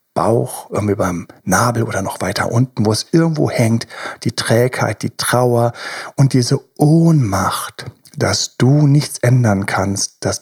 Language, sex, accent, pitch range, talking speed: German, male, German, 115-155 Hz, 145 wpm